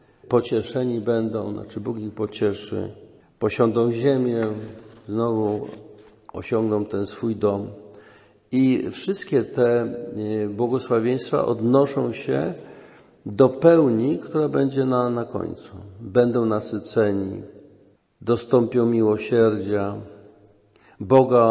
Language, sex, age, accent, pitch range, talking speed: Polish, male, 50-69, native, 105-125 Hz, 85 wpm